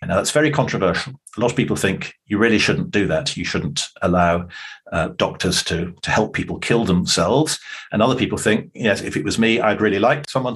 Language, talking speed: English, 215 wpm